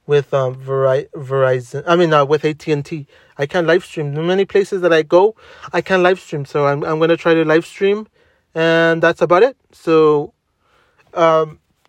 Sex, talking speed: male, 200 wpm